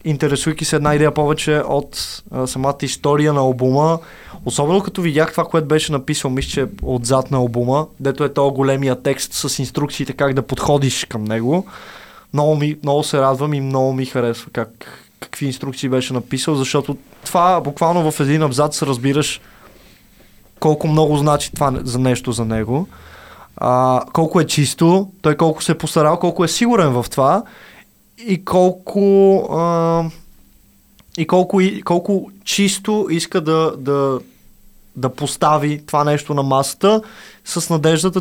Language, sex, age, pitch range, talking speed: Bulgarian, male, 20-39, 140-170 Hz, 150 wpm